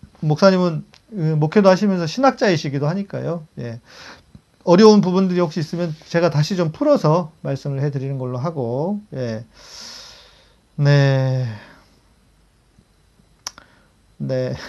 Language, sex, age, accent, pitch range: Korean, male, 40-59, native, 130-180 Hz